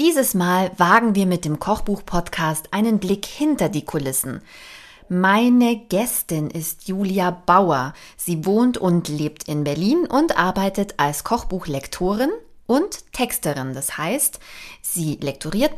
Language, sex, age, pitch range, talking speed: German, female, 30-49, 170-230 Hz, 125 wpm